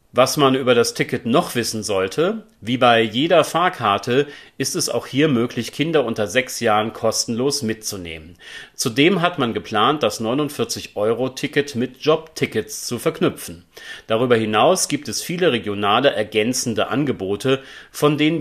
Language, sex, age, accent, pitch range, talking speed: German, male, 40-59, German, 110-150 Hz, 140 wpm